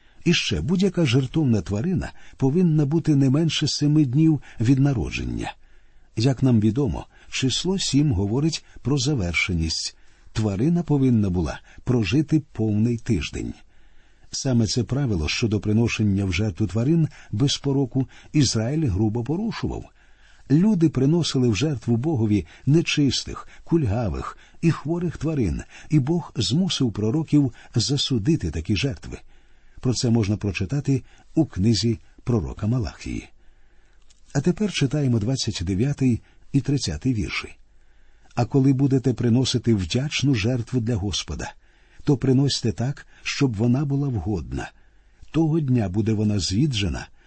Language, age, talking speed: Ukrainian, 50-69, 115 wpm